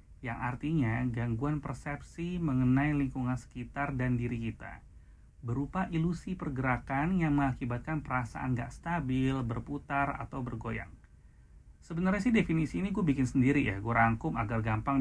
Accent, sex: native, male